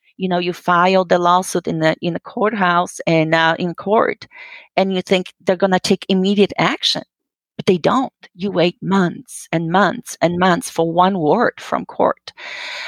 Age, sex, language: 40-59, female, English